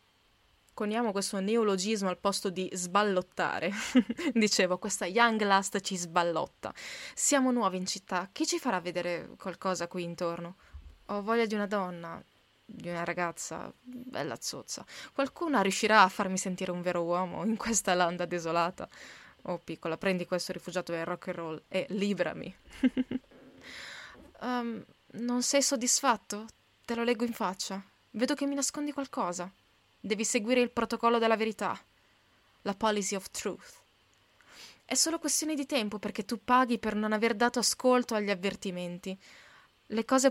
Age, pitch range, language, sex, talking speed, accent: 20-39, 180-240 Hz, Italian, female, 145 wpm, native